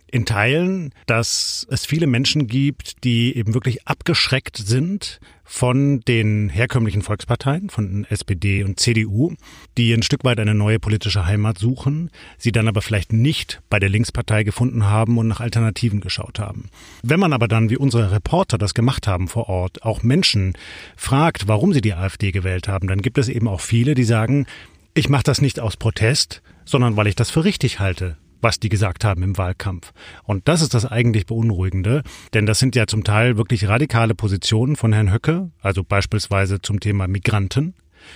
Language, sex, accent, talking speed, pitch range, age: German, male, German, 180 wpm, 105-125 Hz, 40-59